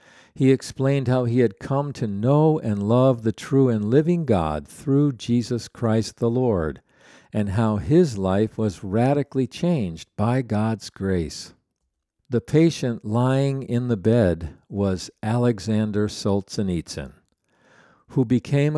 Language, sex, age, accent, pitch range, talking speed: English, male, 50-69, American, 100-130 Hz, 130 wpm